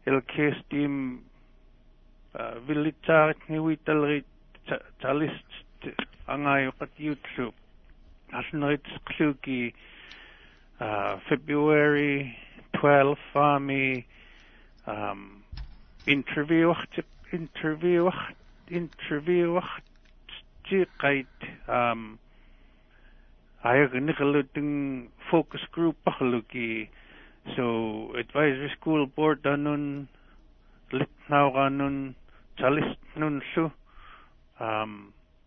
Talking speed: 55 wpm